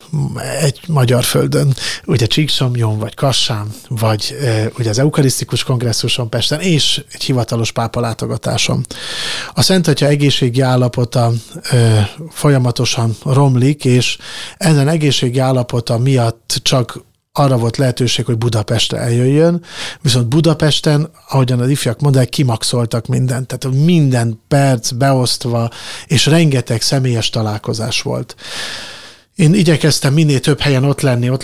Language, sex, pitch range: Hungarian, male, 115-140 Hz